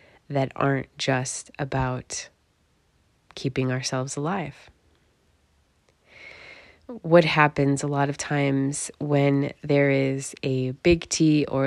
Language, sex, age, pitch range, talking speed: English, female, 20-39, 130-150 Hz, 105 wpm